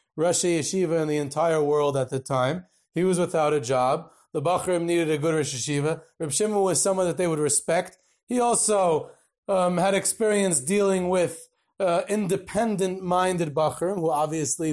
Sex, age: male, 30-49